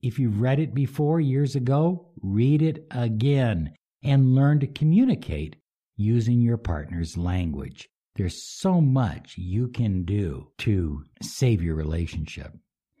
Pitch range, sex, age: 85-135 Hz, male, 60-79